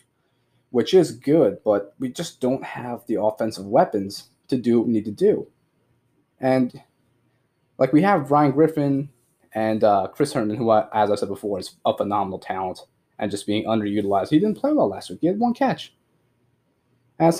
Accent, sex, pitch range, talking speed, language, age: American, male, 110-165 Hz, 180 wpm, English, 20-39